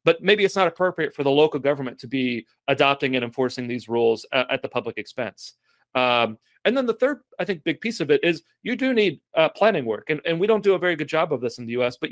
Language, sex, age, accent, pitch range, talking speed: English, male, 30-49, American, 125-155 Hz, 260 wpm